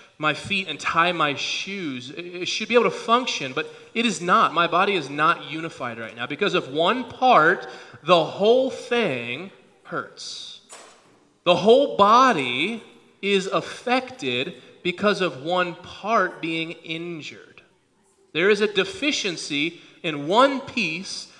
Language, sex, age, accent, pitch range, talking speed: English, male, 30-49, American, 145-210 Hz, 135 wpm